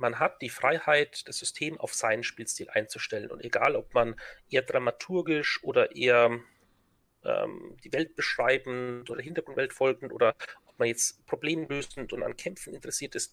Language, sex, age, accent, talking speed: German, male, 40-59, German, 160 wpm